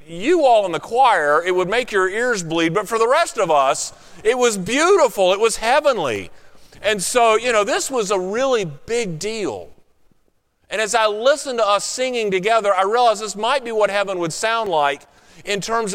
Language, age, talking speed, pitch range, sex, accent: English, 40-59, 200 wpm, 165-220 Hz, male, American